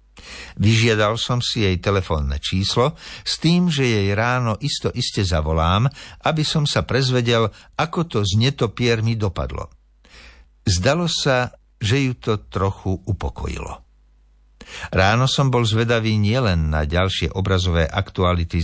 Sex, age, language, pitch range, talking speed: male, 60-79, Slovak, 80-115 Hz, 120 wpm